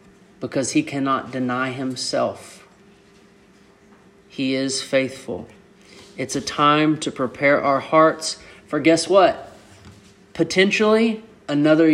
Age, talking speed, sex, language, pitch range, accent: 40-59, 100 wpm, male, English, 130-165 Hz, American